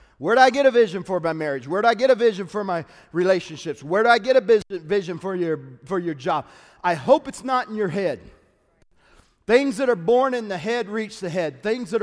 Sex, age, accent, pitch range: male, 40-59, American, 190-270 Hz